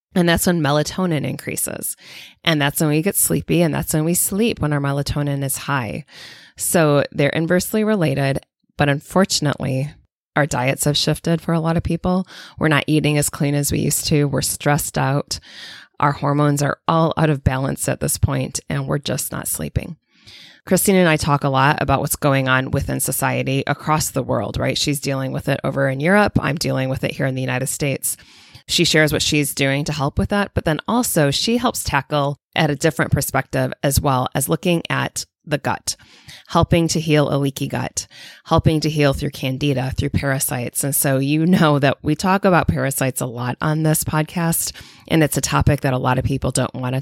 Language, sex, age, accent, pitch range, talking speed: English, female, 20-39, American, 135-155 Hz, 205 wpm